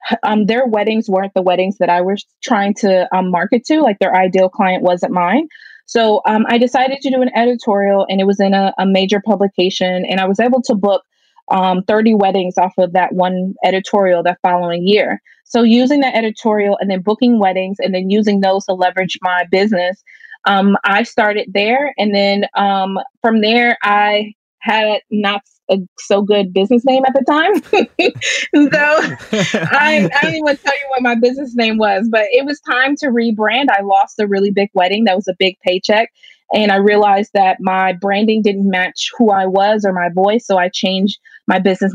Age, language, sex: 20-39, English, female